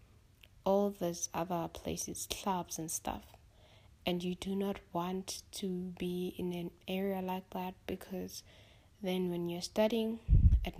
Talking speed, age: 140 wpm, 20-39